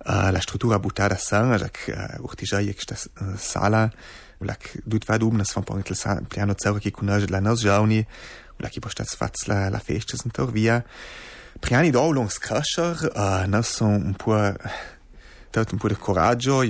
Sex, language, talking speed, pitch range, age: male, Italian, 80 wpm, 100-115 Hz, 30-49